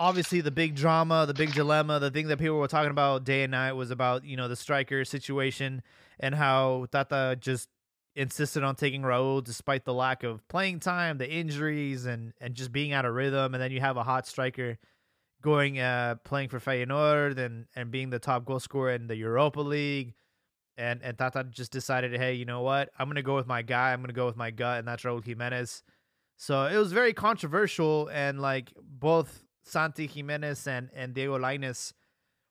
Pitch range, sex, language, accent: 125-150 Hz, male, English, American